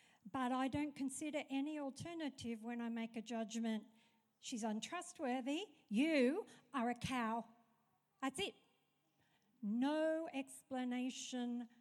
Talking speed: 105 wpm